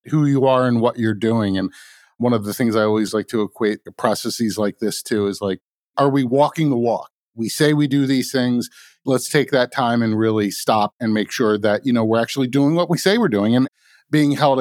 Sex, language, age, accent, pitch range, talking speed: male, English, 50-69, American, 115-145 Hz, 240 wpm